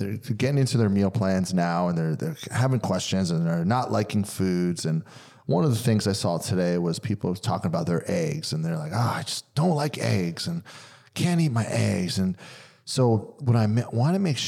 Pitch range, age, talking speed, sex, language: 105-140 Hz, 30-49, 225 wpm, male, English